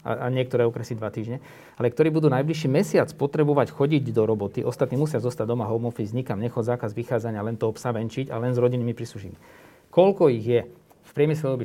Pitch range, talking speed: 115-145 Hz, 190 wpm